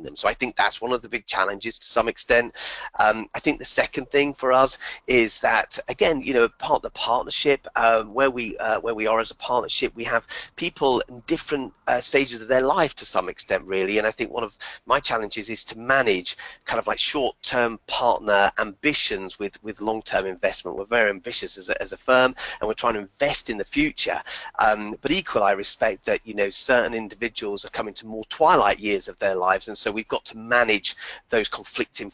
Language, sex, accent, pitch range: English, male, British, 105-130 Hz